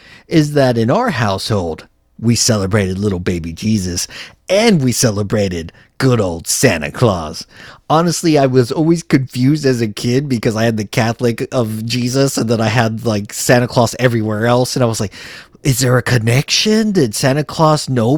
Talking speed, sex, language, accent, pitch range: 175 wpm, male, English, American, 110-145 Hz